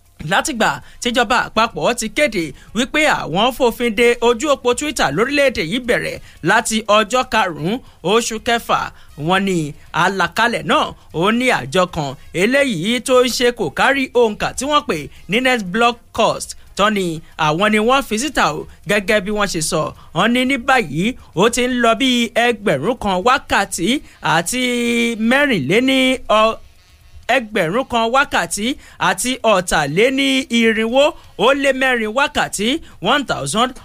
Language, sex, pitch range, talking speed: English, male, 200-255 Hz, 145 wpm